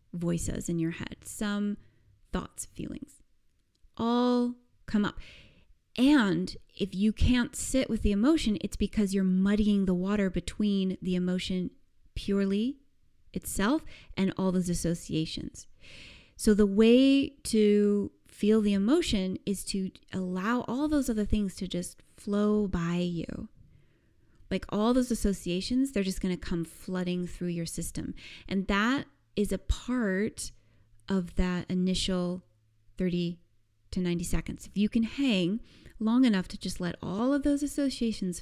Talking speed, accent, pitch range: 140 wpm, American, 175-225 Hz